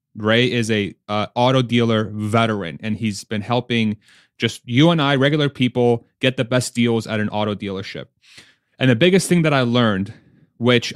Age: 30-49